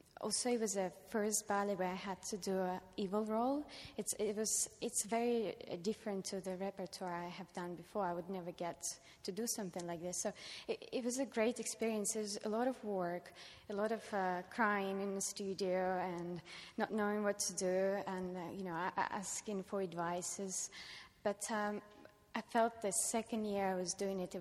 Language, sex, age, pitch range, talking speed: English, female, 20-39, 175-210 Hz, 200 wpm